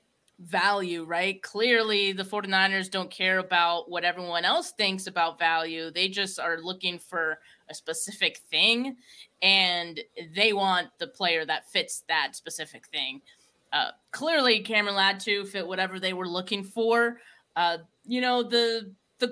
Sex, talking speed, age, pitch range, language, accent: female, 150 wpm, 20-39, 175-215 Hz, English, American